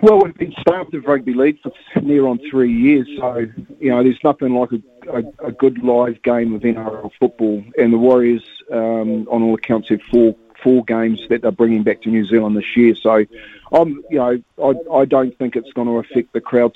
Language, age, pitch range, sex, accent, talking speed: English, 40-59, 115-130 Hz, male, Australian, 220 wpm